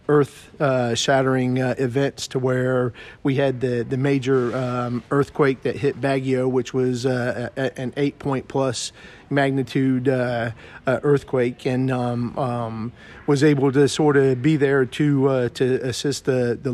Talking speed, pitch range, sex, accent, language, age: 155 wpm, 125-140 Hz, male, American, Filipino, 40-59